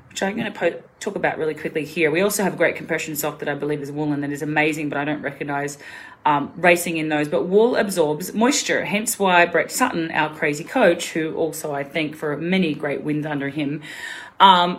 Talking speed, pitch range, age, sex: 225 wpm, 145-195 Hz, 30-49, female